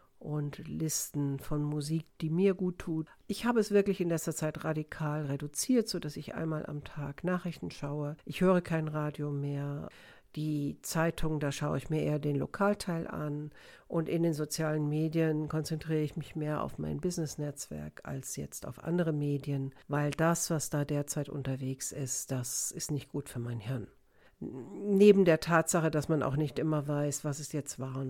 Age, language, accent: 60-79, German, German